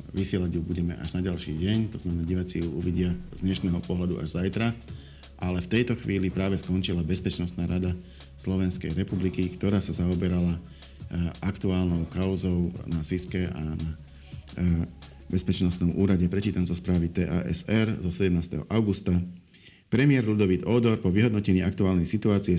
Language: Slovak